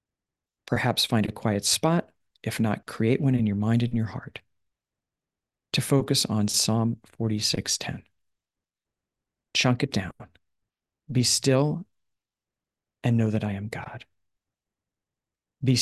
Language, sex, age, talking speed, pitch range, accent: English, male, 50-69, 125 wpm, 105-125 Hz, American